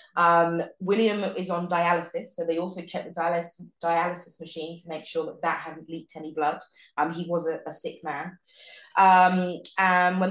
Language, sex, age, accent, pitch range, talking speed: English, female, 20-39, British, 160-185 Hz, 185 wpm